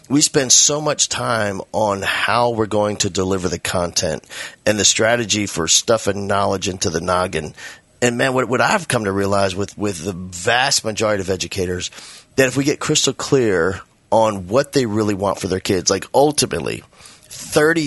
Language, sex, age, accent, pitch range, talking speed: English, male, 30-49, American, 100-135 Hz, 180 wpm